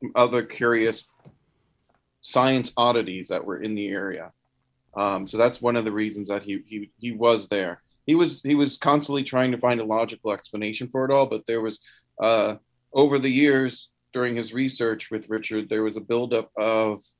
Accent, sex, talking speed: American, male, 185 wpm